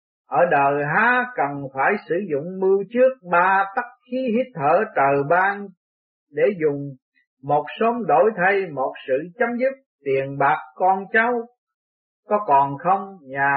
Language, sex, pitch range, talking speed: Vietnamese, male, 140-225 Hz, 150 wpm